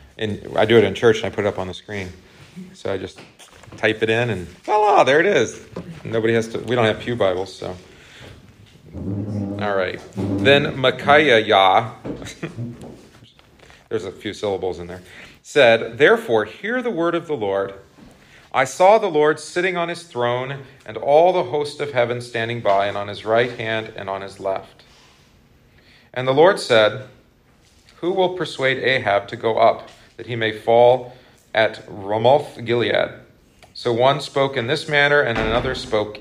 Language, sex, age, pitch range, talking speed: English, male, 40-59, 105-135 Hz, 175 wpm